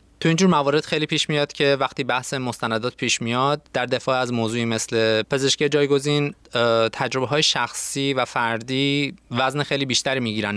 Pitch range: 115-140 Hz